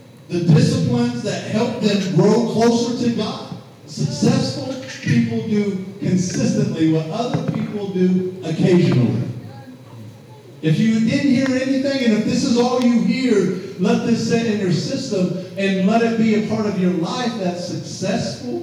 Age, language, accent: 50-69, English, American